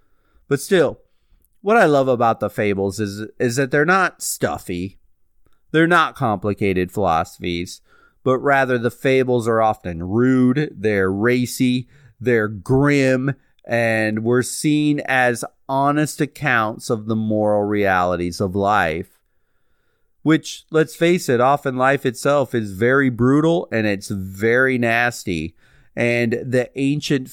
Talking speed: 125 wpm